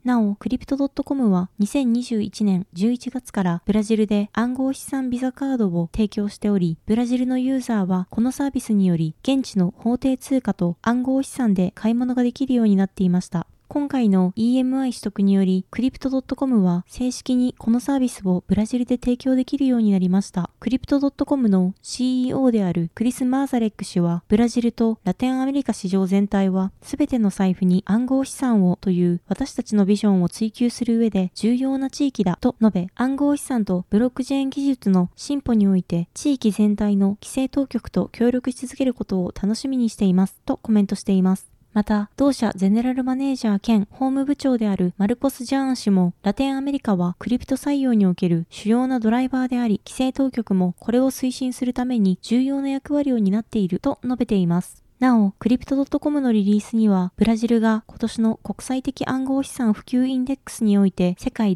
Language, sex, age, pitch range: Japanese, female, 20-39, 195-260 Hz